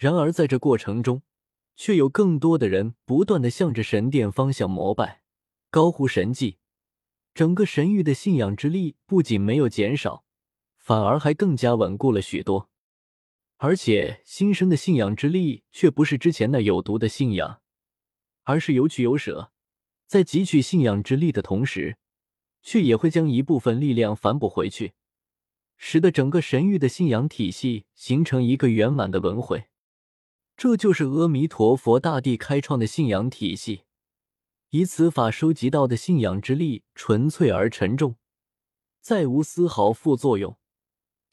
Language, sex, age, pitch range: Chinese, male, 20-39, 110-160 Hz